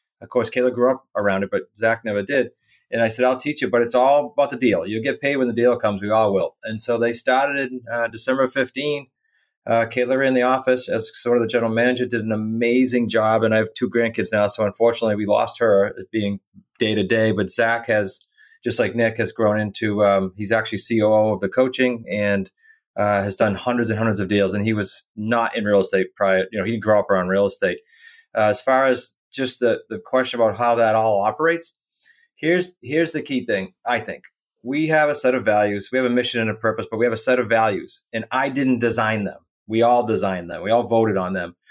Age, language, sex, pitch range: 30-49, English, male, 110-130 Hz